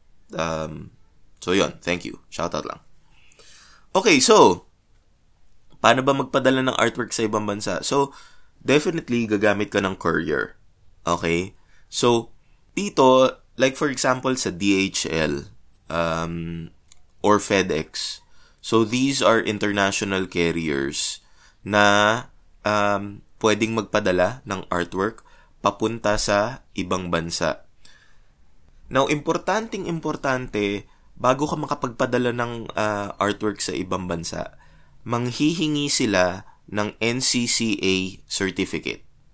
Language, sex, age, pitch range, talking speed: Filipino, male, 20-39, 95-130 Hz, 100 wpm